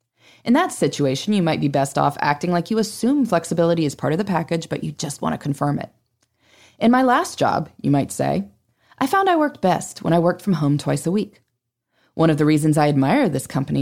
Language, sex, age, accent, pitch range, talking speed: English, female, 20-39, American, 135-210 Hz, 230 wpm